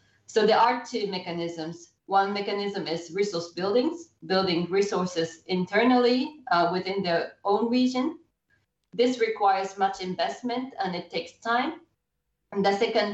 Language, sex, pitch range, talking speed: English, female, 170-210 Hz, 135 wpm